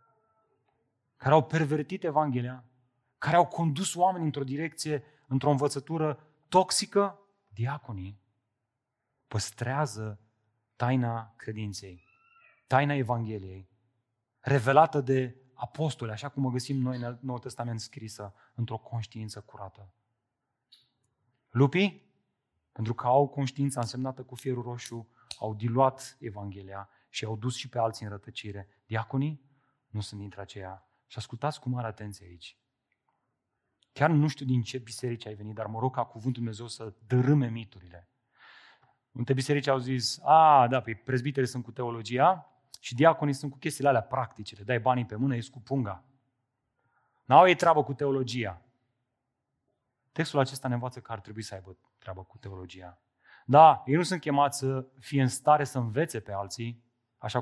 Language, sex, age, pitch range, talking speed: Romanian, male, 30-49, 110-140 Hz, 145 wpm